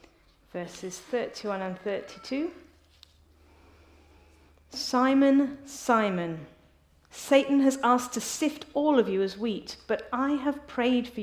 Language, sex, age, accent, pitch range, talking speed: English, female, 40-59, British, 180-235 Hz, 110 wpm